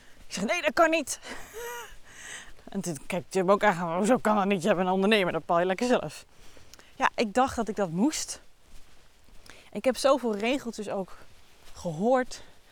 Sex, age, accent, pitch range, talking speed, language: female, 20-39, Dutch, 190-245 Hz, 175 wpm, Dutch